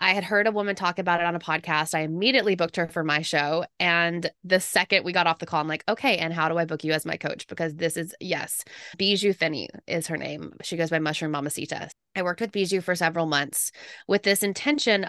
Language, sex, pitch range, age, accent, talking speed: English, female, 160-190 Hz, 20-39, American, 245 wpm